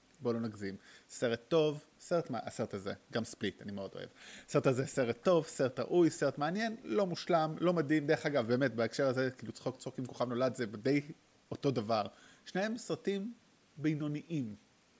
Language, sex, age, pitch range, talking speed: Hebrew, male, 20-39, 120-155 Hz, 175 wpm